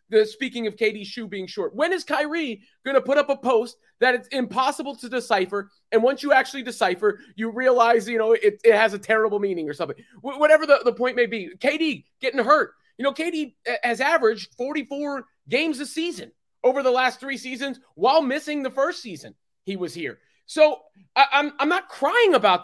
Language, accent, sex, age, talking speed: English, American, male, 30-49, 205 wpm